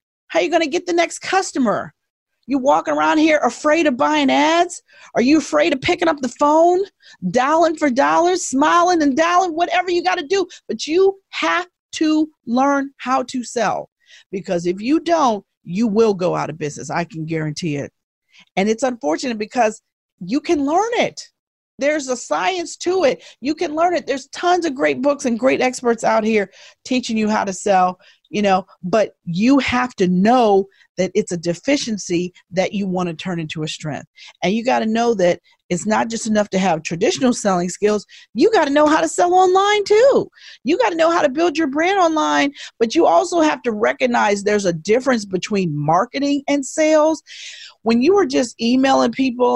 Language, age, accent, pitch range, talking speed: English, 40-59, American, 205-320 Hz, 190 wpm